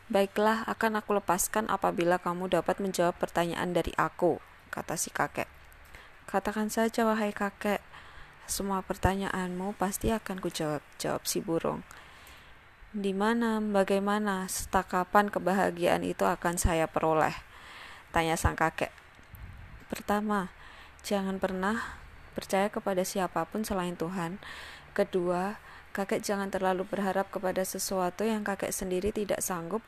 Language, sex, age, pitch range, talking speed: Indonesian, female, 20-39, 175-205 Hz, 115 wpm